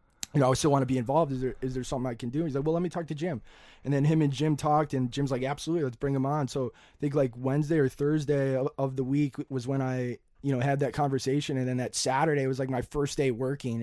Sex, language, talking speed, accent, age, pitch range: male, English, 285 wpm, American, 20-39, 130-150 Hz